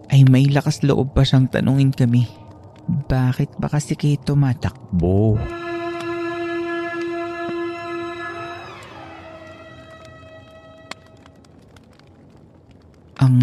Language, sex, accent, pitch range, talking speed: Filipino, male, native, 105-140 Hz, 65 wpm